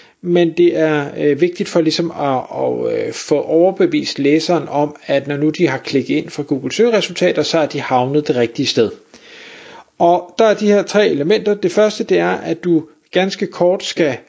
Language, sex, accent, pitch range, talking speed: Danish, male, native, 150-185 Hz, 185 wpm